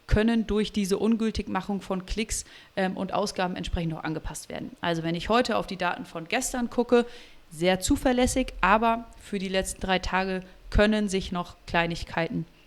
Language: German